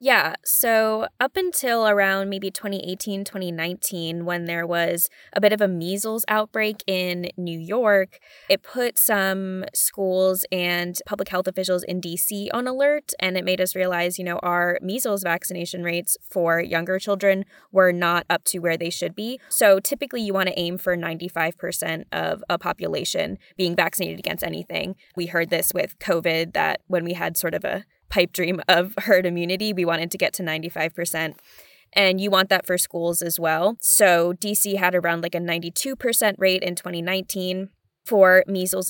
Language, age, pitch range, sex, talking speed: English, 20-39, 175-200 Hz, female, 175 wpm